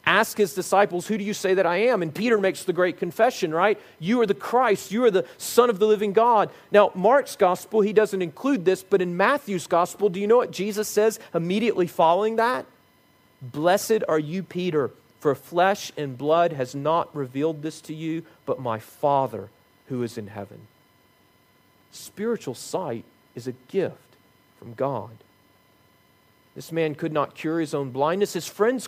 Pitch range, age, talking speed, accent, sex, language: 155-210 Hz, 40-59, 180 wpm, American, male, English